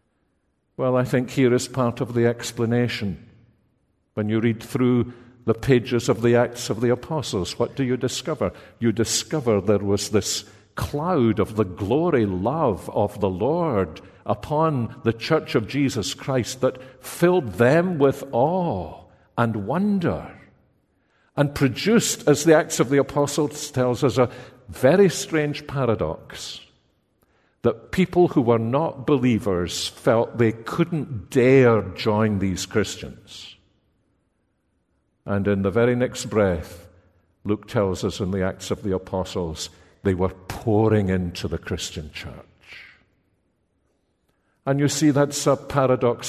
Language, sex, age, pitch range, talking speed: English, male, 50-69, 100-135 Hz, 135 wpm